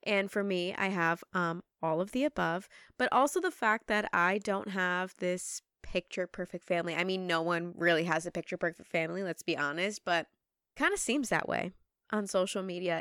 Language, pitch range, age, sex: English, 185-235 Hz, 20-39, female